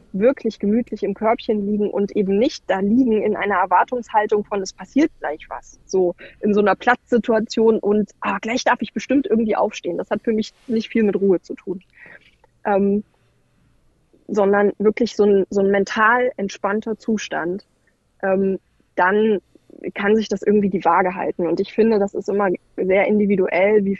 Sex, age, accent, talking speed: female, 20-39, German, 170 wpm